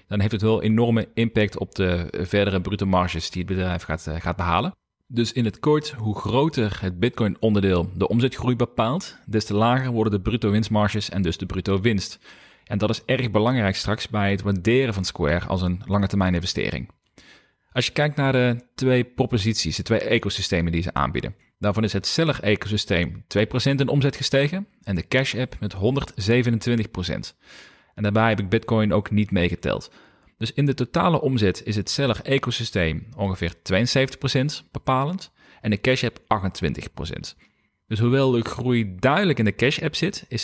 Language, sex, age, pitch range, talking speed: Dutch, male, 40-59, 100-130 Hz, 175 wpm